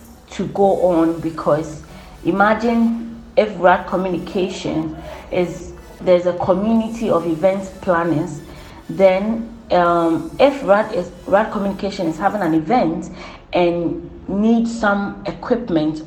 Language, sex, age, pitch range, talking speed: English, female, 40-59, 165-210 Hz, 110 wpm